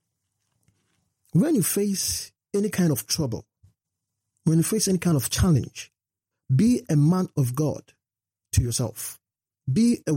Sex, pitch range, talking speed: male, 110-155 Hz, 135 wpm